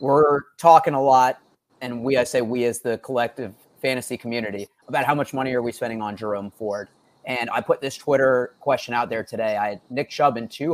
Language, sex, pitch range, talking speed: English, male, 115-140 Hz, 220 wpm